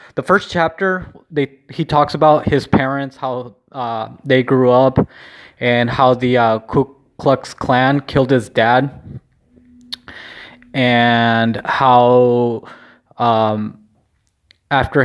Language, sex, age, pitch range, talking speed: English, male, 20-39, 120-135 Hz, 110 wpm